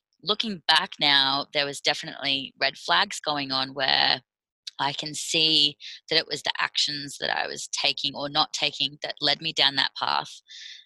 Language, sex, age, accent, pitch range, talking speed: English, female, 20-39, Australian, 135-150 Hz, 175 wpm